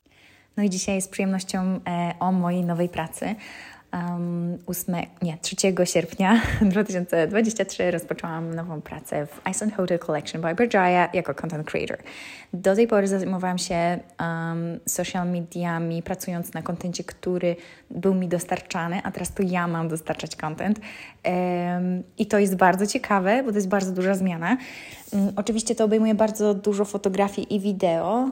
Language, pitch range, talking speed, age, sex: Polish, 180-220 Hz, 150 wpm, 20-39, female